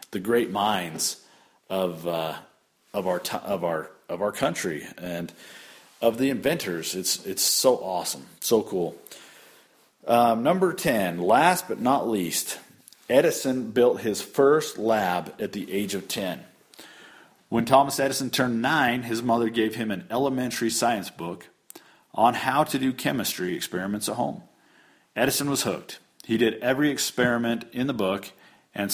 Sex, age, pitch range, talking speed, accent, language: male, 40-59, 100-125 Hz, 150 wpm, American, English